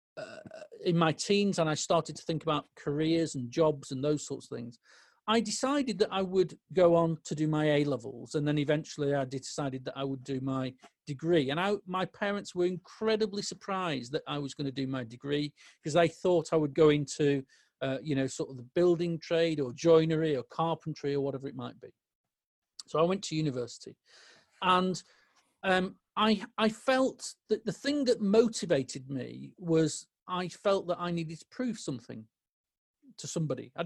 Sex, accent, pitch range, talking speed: male, British, 145-190 Hz, 190 wpm